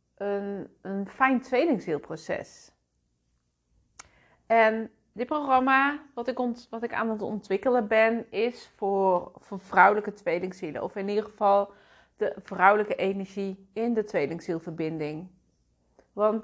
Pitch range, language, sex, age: 170-230 Hz, Dutch, female, 30-49